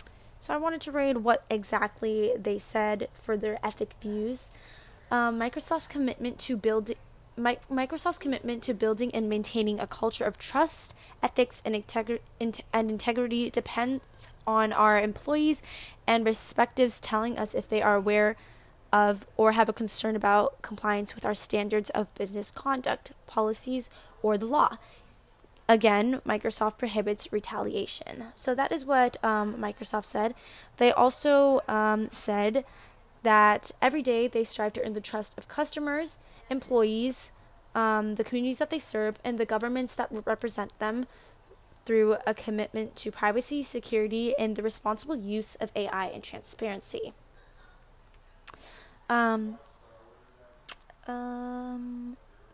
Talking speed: 135 wpm